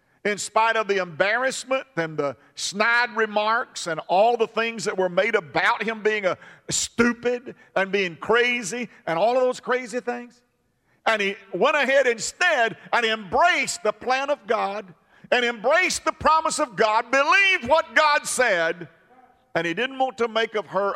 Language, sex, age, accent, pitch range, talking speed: English, male, 50-69, American, 170-230 Hz, 170 wpm